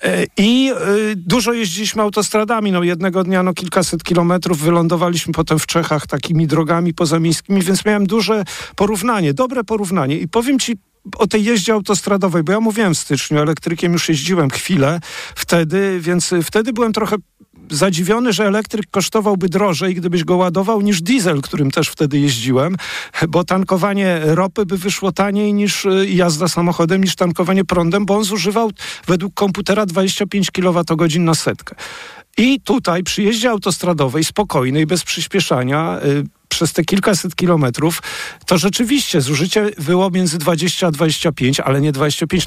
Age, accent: 50-69, native